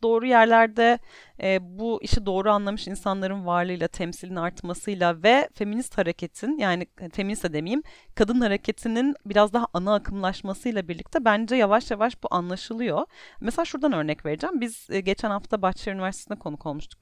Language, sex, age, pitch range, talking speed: Turkish, female, 40-59, 175-250 Hz, 140 wpm